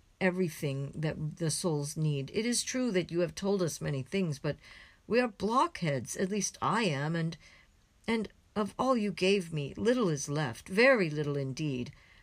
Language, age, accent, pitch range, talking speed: English, 60-79, American, 140-180 Hz, 175 wpm